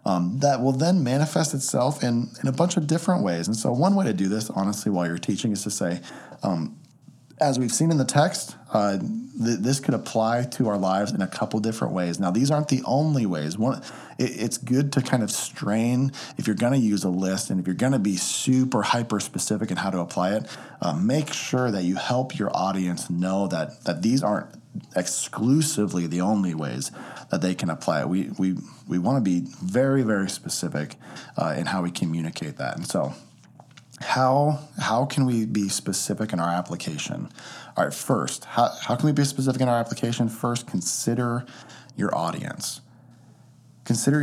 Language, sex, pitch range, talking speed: English, male, 90-130 Hz, 200 wpm